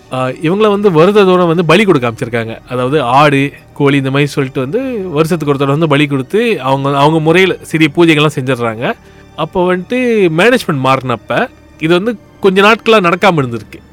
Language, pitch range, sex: Tamil, 130-175 Hz, male